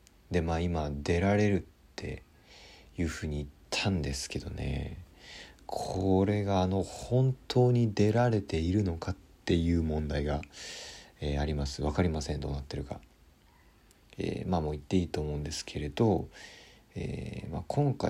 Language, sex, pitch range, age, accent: Japanese, male, 75-120 Hz, 40-59, native